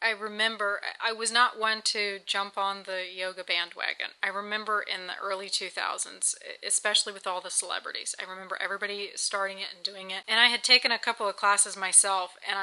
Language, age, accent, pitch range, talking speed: English, 30-49, American, 195-225 Hz, 195 wpm